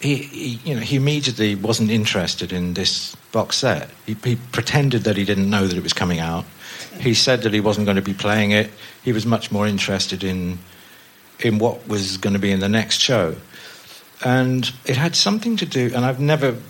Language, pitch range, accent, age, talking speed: English, 100-120 Hz, British, 50-69, 210 wpm